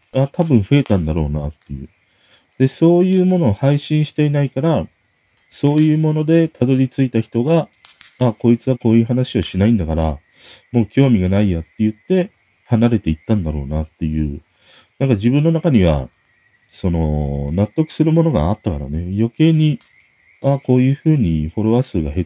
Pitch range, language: 85-125 Hz, Japanese